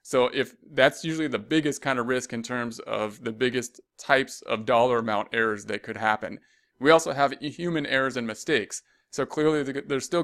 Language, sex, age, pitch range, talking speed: English, male, 30-49, 115-140 Hz, 195 wpm